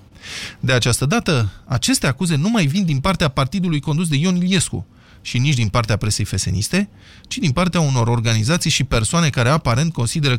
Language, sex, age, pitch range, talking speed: Romanian, male, 20-39, 115-165 Hz, 180 wpm